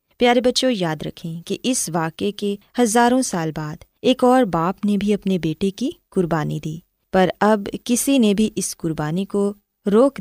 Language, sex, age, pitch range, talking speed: Urdu, female, 20-39, 165-220 Hz, 175 wpm